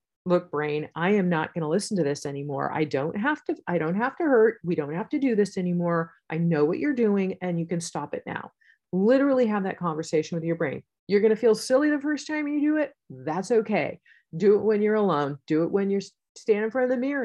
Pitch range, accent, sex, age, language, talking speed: 165-220 Hz, American, female, 40-59, English, 255 wpm